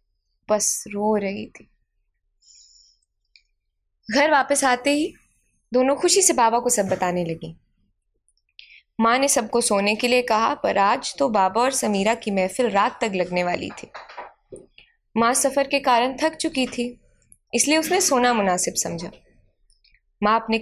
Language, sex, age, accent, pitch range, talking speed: Hindi, female, 20-39, native, 195-255 Hz, 145 wpm